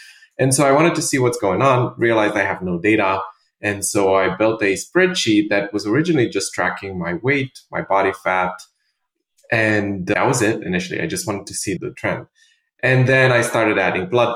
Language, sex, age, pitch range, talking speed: English, male, 20-39, 95-130 Hz, 200 wpm